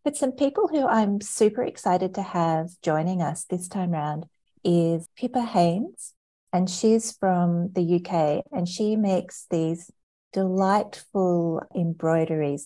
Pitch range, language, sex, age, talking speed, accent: 160-200 Hz, English, female, 30-49, 135 wpm, Australian